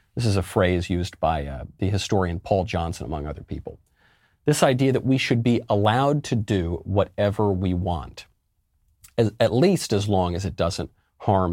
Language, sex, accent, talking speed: English, male, American, 175 wpm